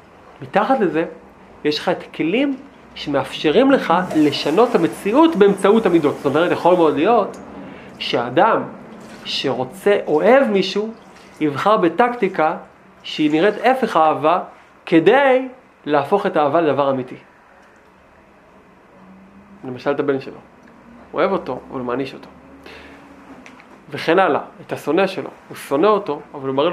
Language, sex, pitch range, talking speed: Hebrew, male, 145-205 Hz, 130 wpm